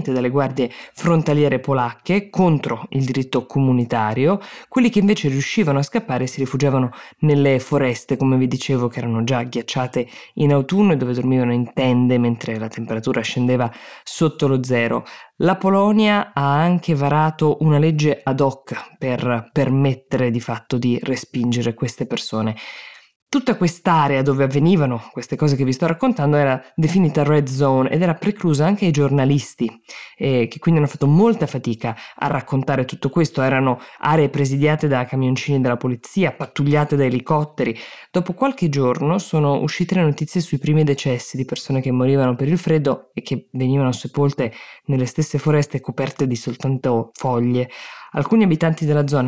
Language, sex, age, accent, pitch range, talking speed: Italian, female, 20-39, native, 130-155 Hz, 155 wpm